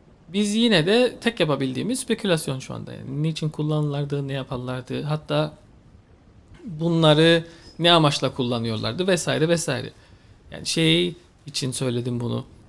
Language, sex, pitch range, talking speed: English, male, 135-185 Hz, 120 wpm